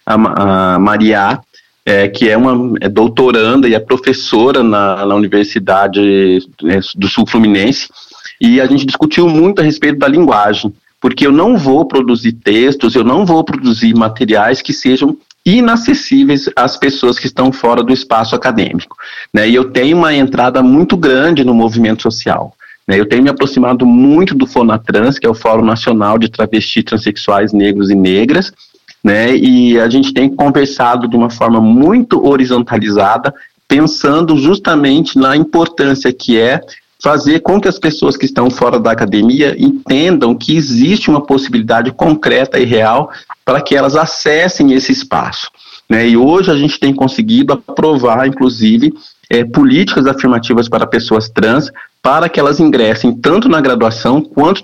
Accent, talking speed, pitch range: Brazilian, 155 wpm, 115-160 Hz